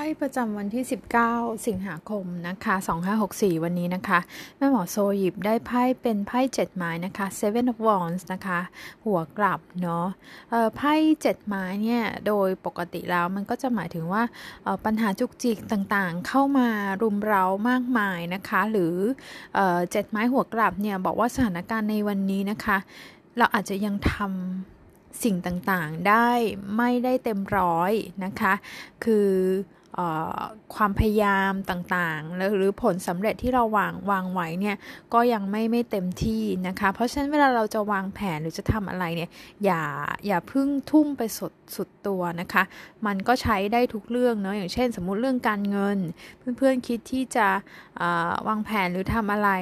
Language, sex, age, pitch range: Thai, female, 20-39, 185-230 Hz